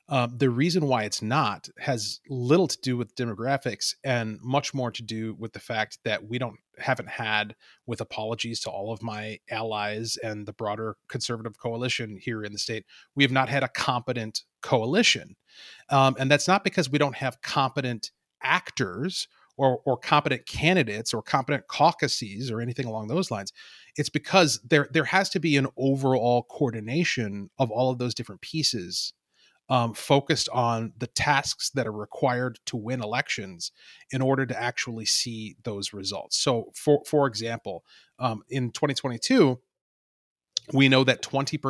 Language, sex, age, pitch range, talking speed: English, male, 30-49, 110-140 Hz, 160 wpm